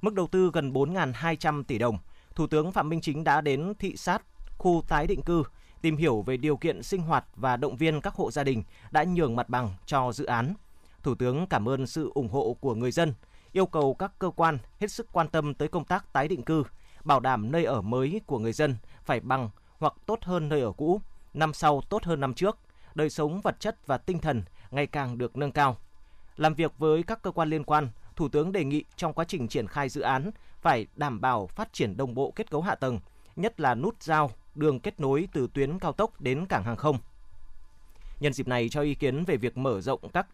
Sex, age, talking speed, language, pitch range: male, 20-39, 230 wpm, Vietnamese, 125-165 Hz